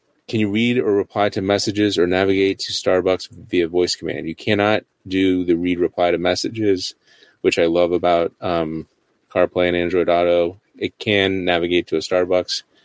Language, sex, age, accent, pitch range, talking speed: English, male, 30-49, American, 85-95 Hz, 175 wpm